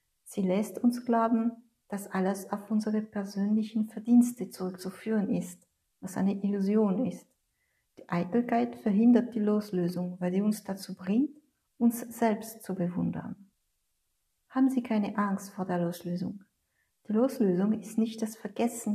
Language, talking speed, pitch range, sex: German, 135 wpm, 190-225 Hz, female